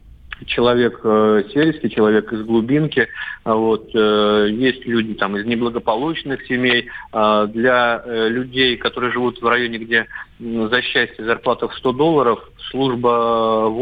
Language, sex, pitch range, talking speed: Russian, male, 110-130 Hz, 130 wpm